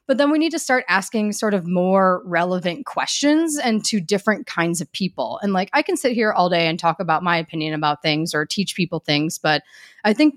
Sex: female